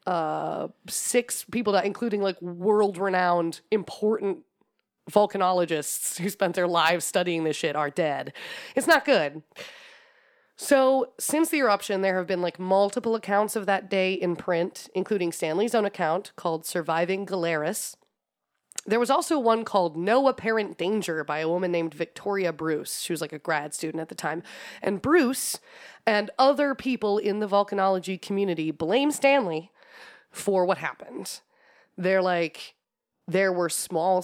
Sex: female